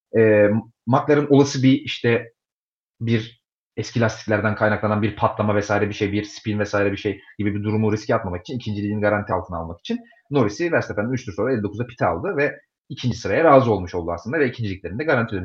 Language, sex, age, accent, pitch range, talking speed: Turkish, male, 40-59, native, 105-150 Hz, 185 wpm